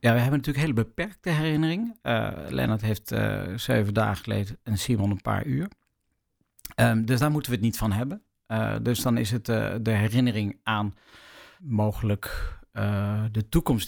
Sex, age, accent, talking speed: male, 50-69, Dutch, 180 wpm